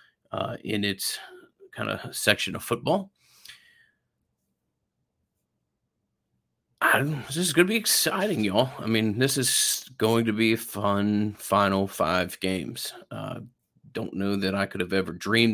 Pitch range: 95-110 Hz